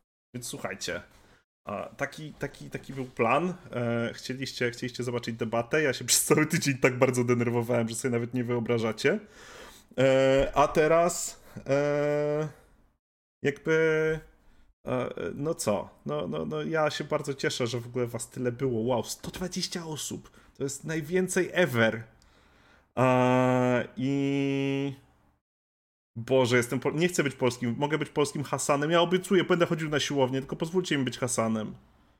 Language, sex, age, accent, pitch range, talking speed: Polish, male, 30-49, native, 120-145 Hz, 130 wpm